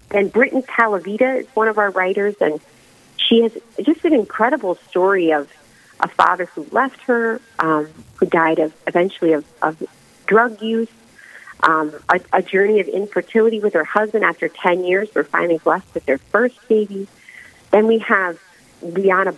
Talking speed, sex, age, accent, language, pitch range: 160 wpm, female, 40-59, American, English, 175-225 Hz